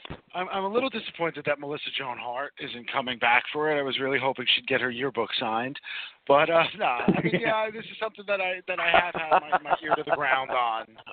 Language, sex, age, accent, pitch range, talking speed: English, male, 50-69, American, 130-175 Hz, 250 wpm